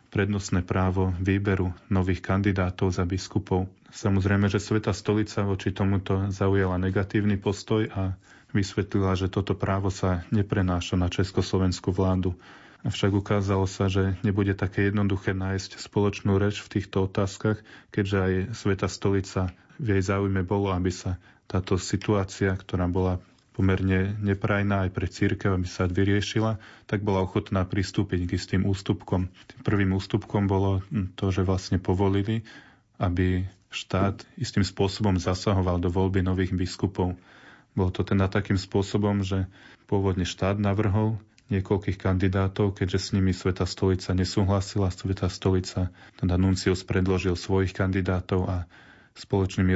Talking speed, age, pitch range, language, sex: 135 wpm, 20-39, 95-100 Hz, Slovak, male